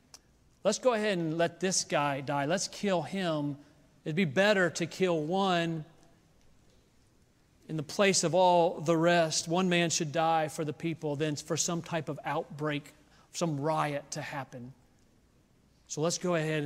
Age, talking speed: 40-59, 160 wpm